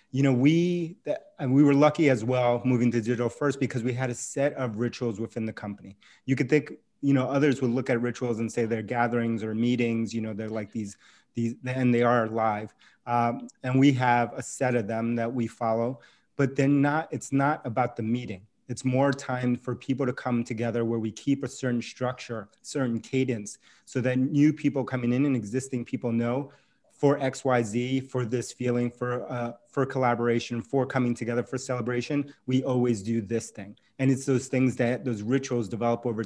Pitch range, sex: 115-130 Hz, male